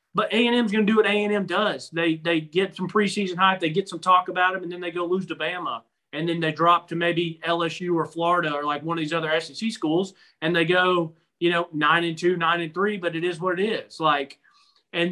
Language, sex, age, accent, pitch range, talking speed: English, male, 30-49, American, 155-185 Hz, 260 wpm